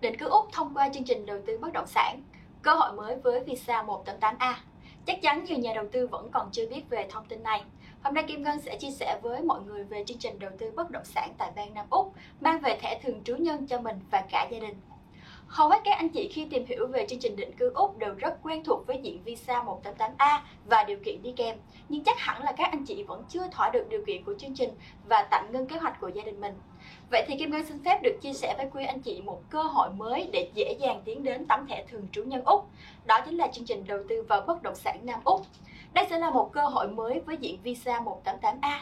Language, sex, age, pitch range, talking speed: English, female, 20-39, 240-385 Hz, 265 wpm